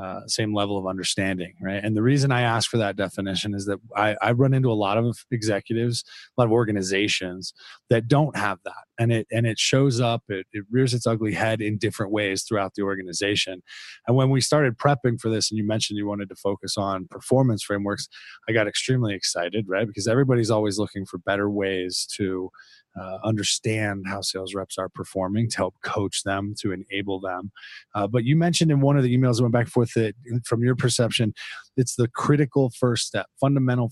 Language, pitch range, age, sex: English, 100-120 Hz, 20-39, male